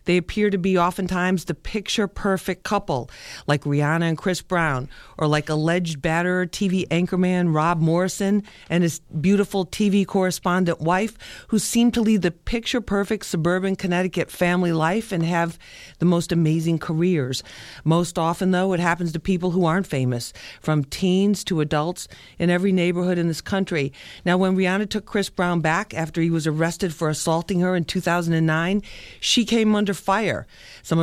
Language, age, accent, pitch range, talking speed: English, 50-69, American, 160-190 Hz, 160 wpm